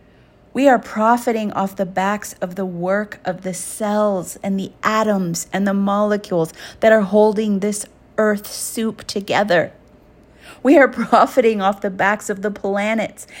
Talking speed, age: 150 wpm, 30-49